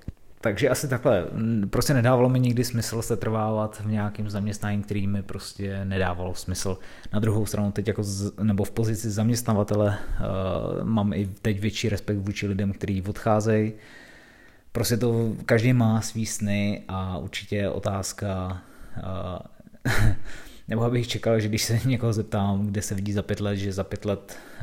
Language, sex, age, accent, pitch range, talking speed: Czech, male, 20-39, native, 95-110 Hz, 160 wpm